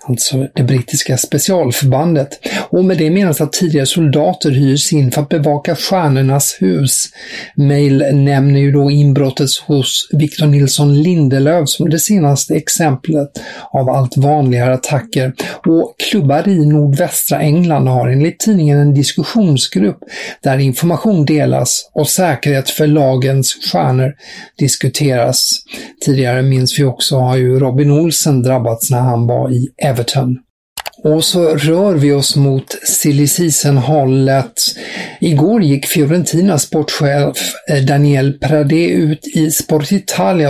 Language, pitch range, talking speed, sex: English, 135-155 Hz, 125 wpm, male